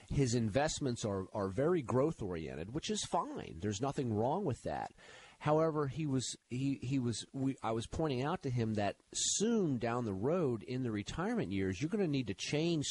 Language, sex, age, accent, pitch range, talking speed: English, male, 40-59, American, 95-125 Hz, 200 wpm